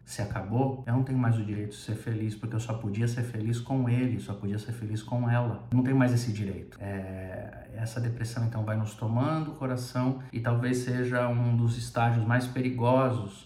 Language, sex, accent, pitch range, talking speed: Portuguese, male, Brazilian, 115-130 Hz, 205 wpm